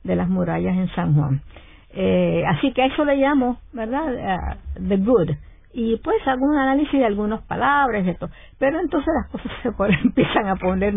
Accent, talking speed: American, 195 wpm